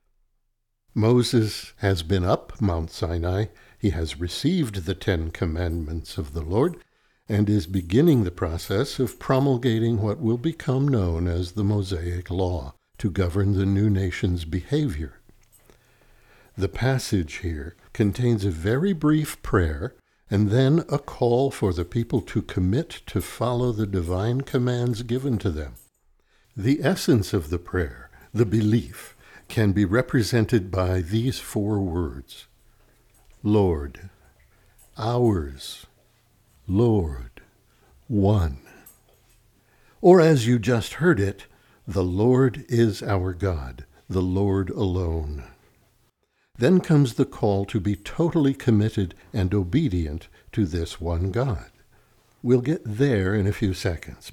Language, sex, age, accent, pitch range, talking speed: English, male, 60-79, American, 90-120 Hz, 125 wpm